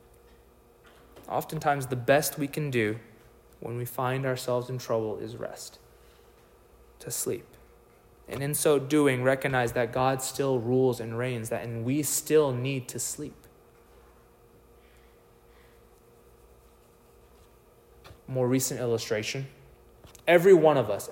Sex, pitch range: male, 125-145 Hz